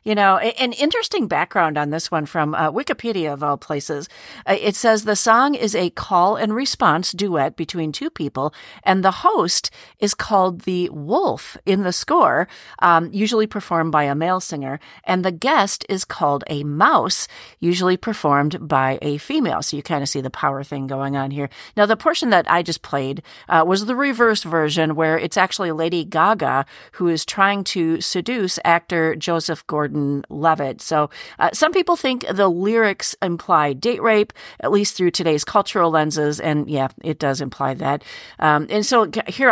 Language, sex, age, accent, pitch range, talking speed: English, female, 40-59, American, 150-210 Hz, 185 wpm